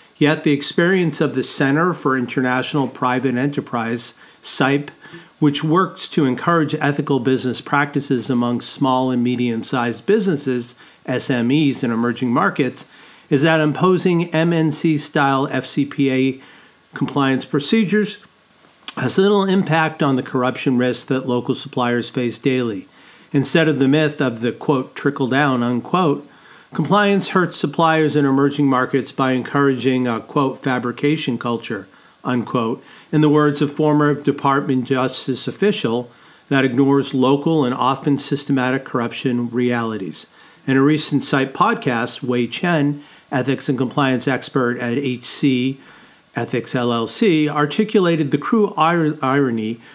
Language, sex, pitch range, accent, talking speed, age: English, male, 125-155 Hz, American, 125 wpm, 50-69